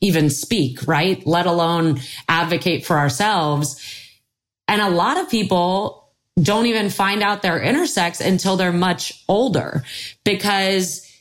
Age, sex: 30-49, female